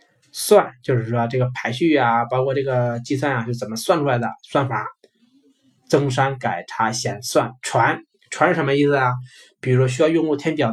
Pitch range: 115-140 Hz